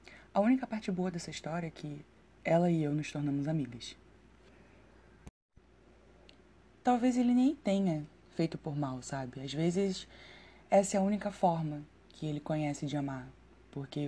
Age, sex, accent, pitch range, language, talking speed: 20-39, female, Brazilian, 140-170 Hz, Portuguese, 150 wpm